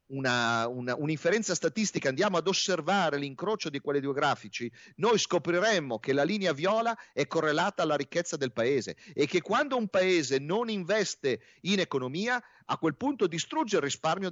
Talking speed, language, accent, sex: 165 wpm, Italian, native, male